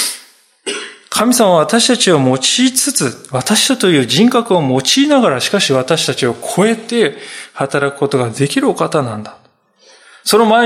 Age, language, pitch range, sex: 20-39, Japanese, 135-200 Hz, male